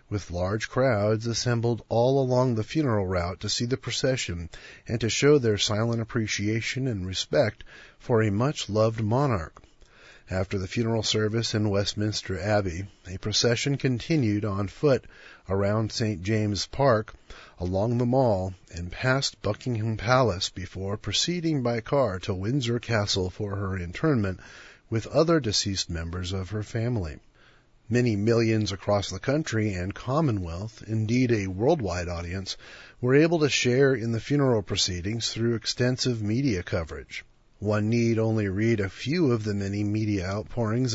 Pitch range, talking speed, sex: 100-130 Hz, 145 wpm, male